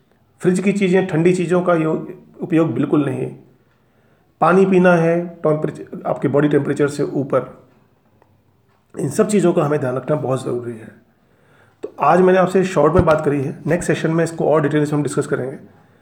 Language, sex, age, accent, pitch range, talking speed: Hindi, male, 40-59, native, 135-175 Hz, 180 wpm